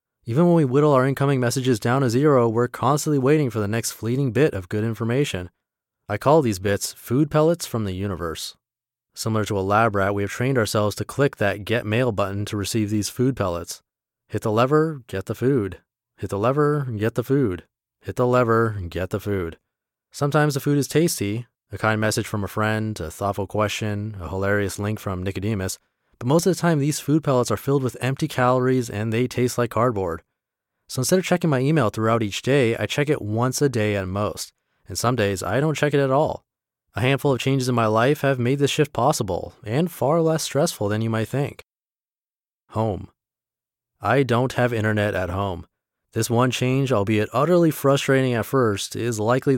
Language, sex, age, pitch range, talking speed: English, male, 20-39, 105-135 Hz, 205 wpm